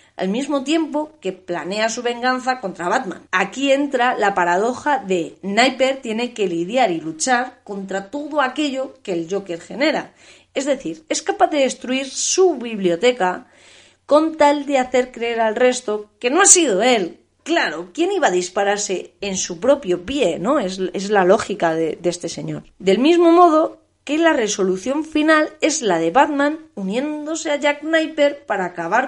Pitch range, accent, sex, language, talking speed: 195-300 Hz, Spanish, female, Spanish, 170 wpm